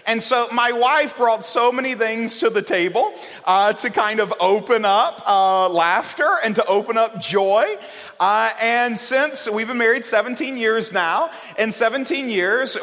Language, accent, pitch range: English, American, 195-235 Hz